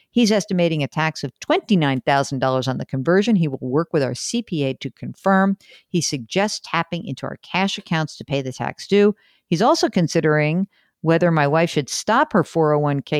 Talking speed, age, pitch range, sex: 175 wpm, 50-69, 145-205 Hz, female